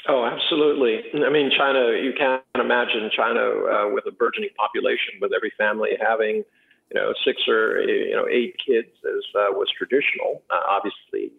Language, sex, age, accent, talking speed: English, male, 50-69, American, 170 wpm